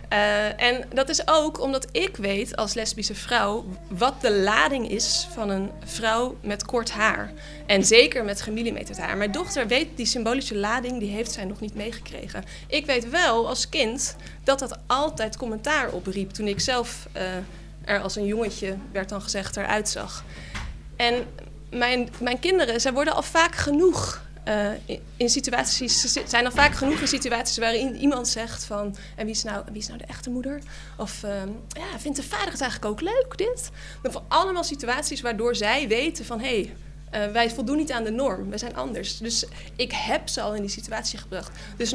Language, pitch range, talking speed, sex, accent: Dutch, 210-265 Hz, 195 wpm, female, Dutch